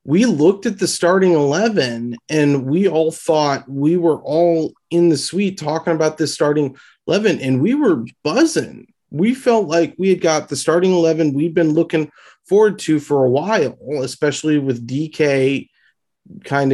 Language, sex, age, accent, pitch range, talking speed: English, male, 30-49, American, 125-155 Hz, 165 wpm